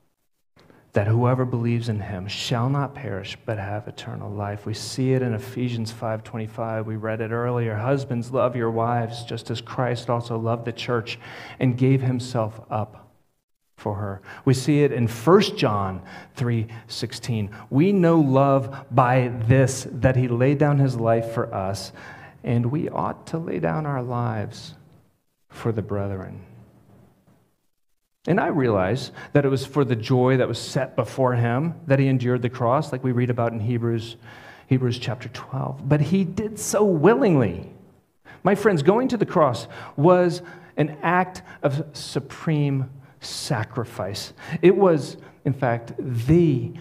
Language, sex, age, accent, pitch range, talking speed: English, male, 40-59, American, 115-140 Hz, 155 wpm